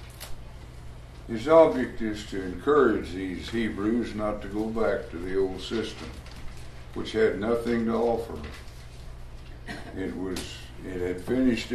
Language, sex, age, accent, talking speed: English, male, 60-79, American, 130 wpm